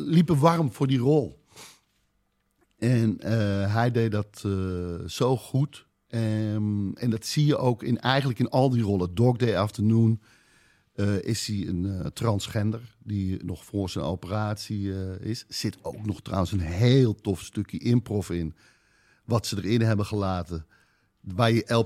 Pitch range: 100-125 Hz